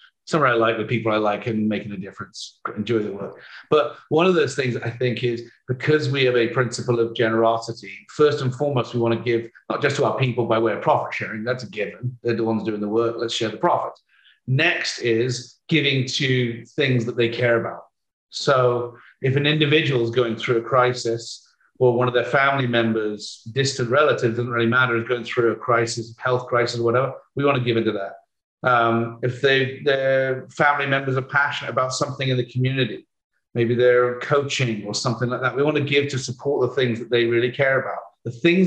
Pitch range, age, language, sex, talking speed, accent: 115-140 Hz, 40-59, English, male, 215 wpm, British